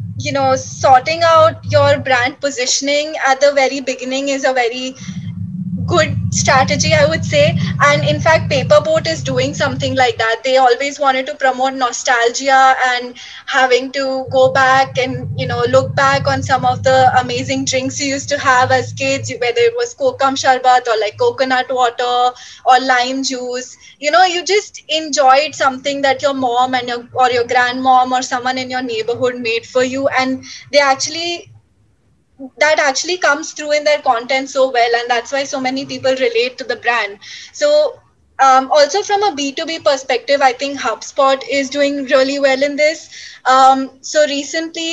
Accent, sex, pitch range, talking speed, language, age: Indian, female, 250-285 Hz, 175 wpm, English, 20-39